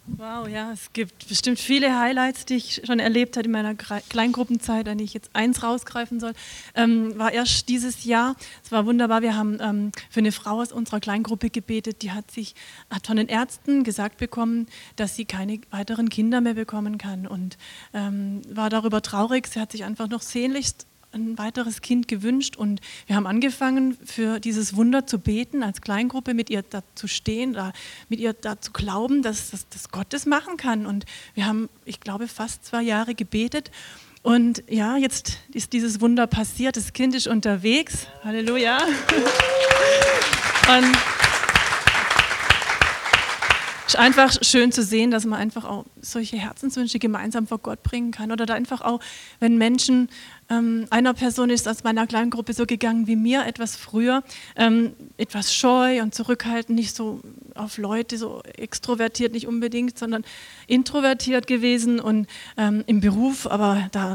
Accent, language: German, German